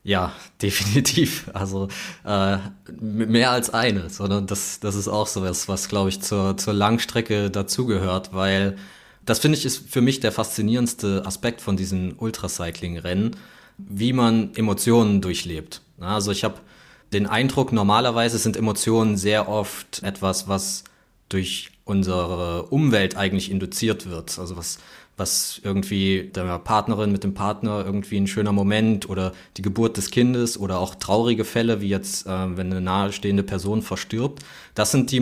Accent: German